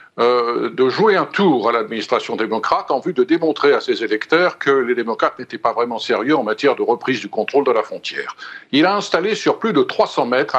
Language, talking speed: French, 220 wpm